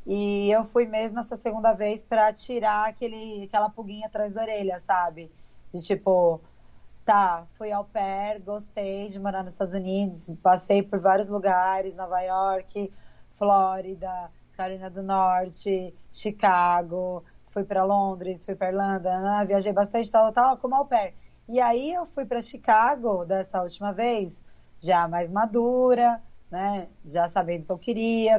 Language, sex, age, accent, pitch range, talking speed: Portuguese, female, 20-39, Brazilian, 185-220 Hz, 150 wpm